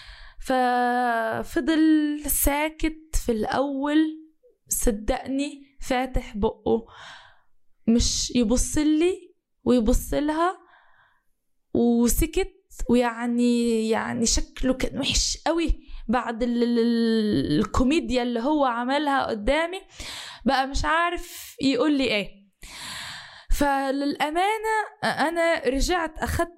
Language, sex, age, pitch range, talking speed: Arabic, female, 10-29, 240-315 Hz, 70 wpm